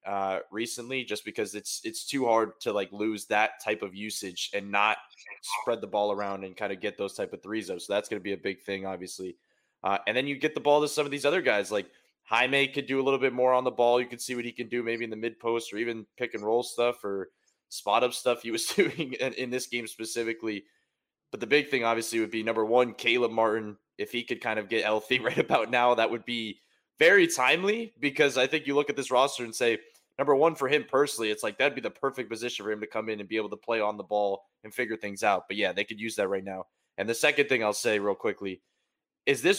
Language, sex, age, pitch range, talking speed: English, male, 20-39, 105-135 Hz, 265 wpm